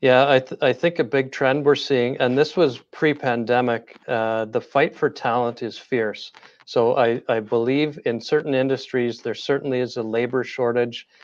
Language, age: English, 40-59